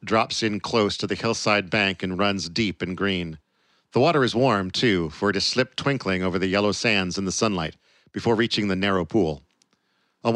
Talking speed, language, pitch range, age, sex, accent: 205 wpm, English, 95-115 Hz, 50-69, male, American